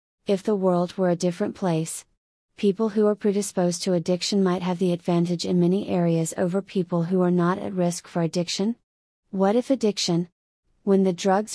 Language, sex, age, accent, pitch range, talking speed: English, female, 30-49, American, 175-200 Hz, 180 wpm